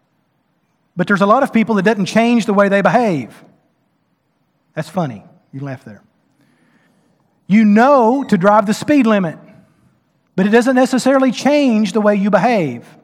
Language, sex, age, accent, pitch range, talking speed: English, male, 40-59, American, 165-230 Hz, 155 wpm